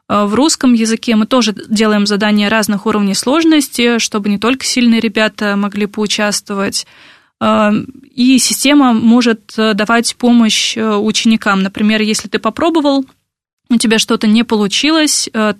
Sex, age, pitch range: female, 20-39, 210-235 Hz